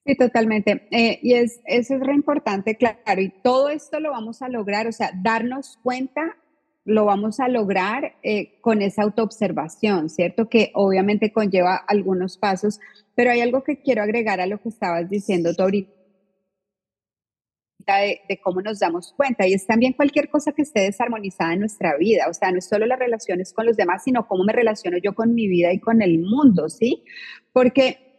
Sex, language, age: female, Spanish, 30-49